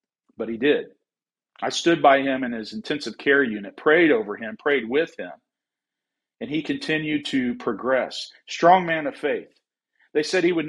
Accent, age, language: American, 40-59, English